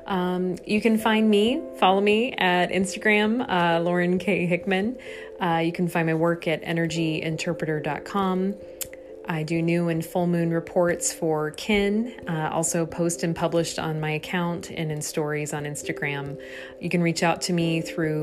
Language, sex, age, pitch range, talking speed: English, female, 20-39, 155-185 Hz, 165 wpm